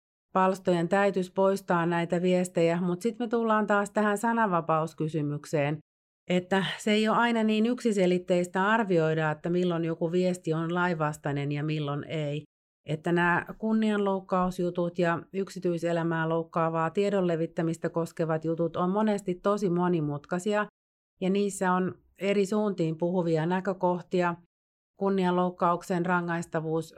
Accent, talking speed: native, 115 wpm